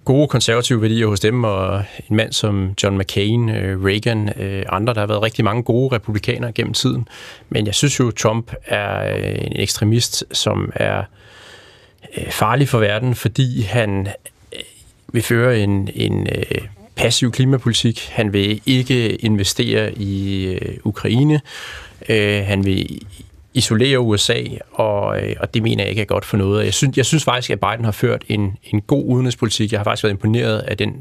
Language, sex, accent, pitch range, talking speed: Danish, male, native, 100-120 Hz, 165 wpm